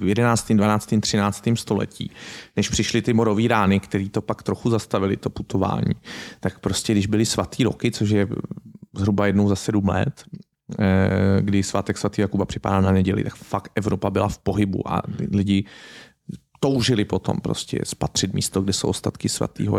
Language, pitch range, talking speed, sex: Czech, 100-115 Hz, 165 wpm, male